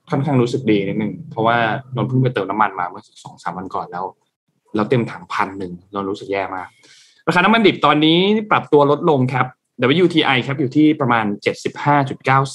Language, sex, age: Thai, male, 20-39